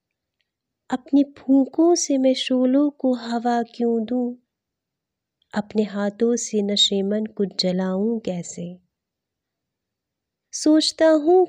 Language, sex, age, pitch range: Hindi, female, 30-49, 210-280 Hz